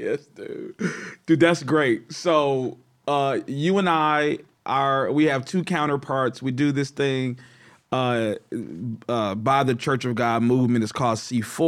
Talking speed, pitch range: 150 wpm, 125-175 Hz